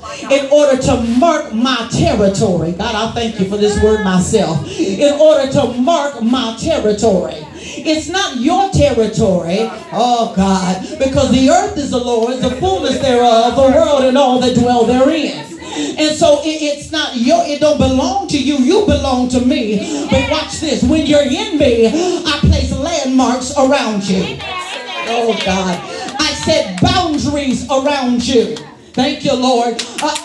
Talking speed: 155 wpm